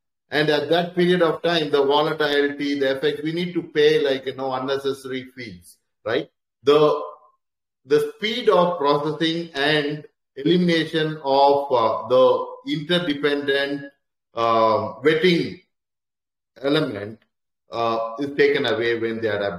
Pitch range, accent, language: 130-160 Hz, Indian, English